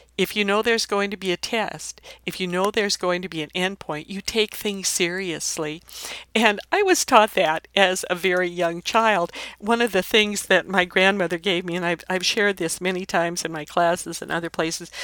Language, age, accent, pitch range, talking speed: English, 60-79, American, 170-215 Hz, 220 wpm